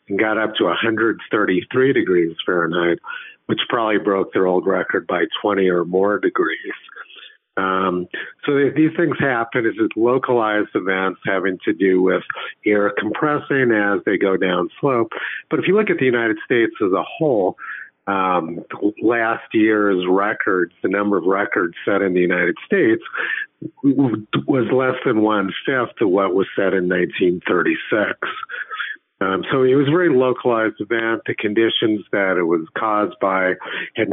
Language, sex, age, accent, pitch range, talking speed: English, male, 50-69, American, 95-120 Hz, 155 wpm